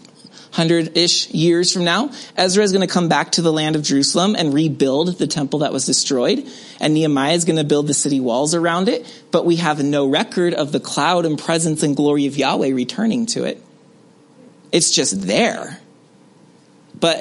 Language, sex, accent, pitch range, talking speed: English, male, American, 145-195 Hz, 190 wpm